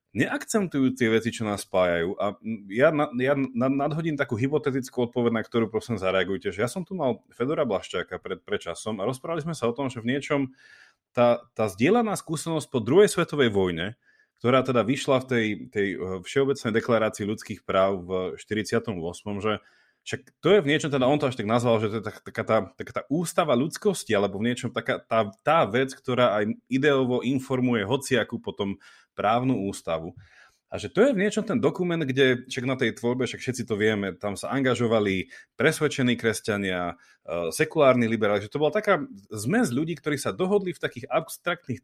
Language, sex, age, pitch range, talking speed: Slovak, male, 30-49, 110-145 Hz, 185 wpm